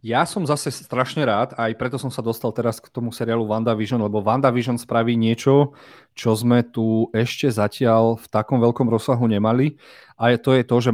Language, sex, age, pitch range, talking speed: Slovak, male, 30-49, 110-130 Hz, 185 wpm